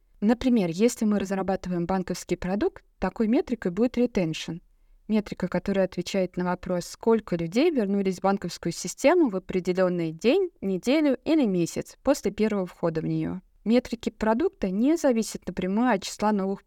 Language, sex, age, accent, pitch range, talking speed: Russian, female, 20-39, native, 185-245 Hz, 145 wpm